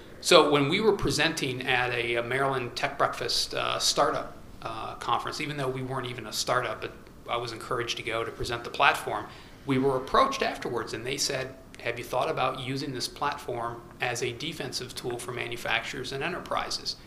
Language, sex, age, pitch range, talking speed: English, male, 40-59, 120-145 Hz, 185 wpm